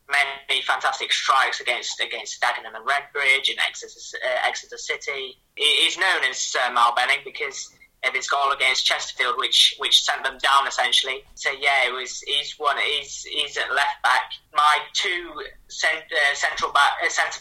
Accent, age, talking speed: British, 20-39, 170 wpm